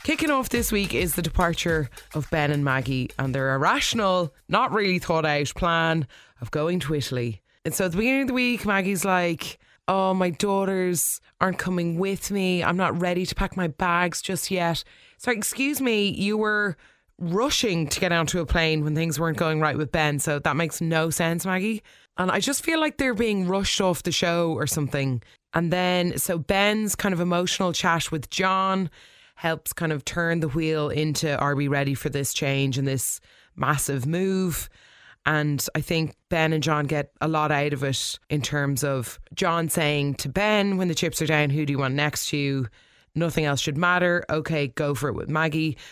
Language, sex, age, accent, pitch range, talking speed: English, female, 20-39, Irish, 145-185 Hz, 200 wpm